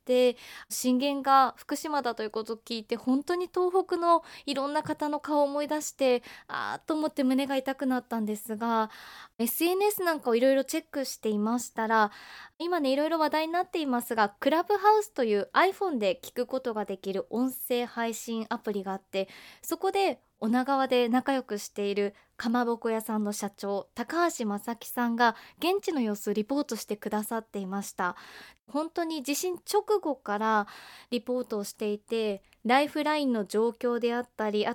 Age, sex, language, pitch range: 20-39, female, Japanese, 220-300 Hz